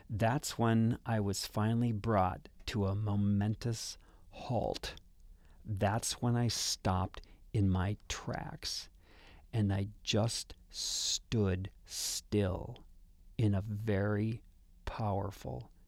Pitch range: 85-115 Hz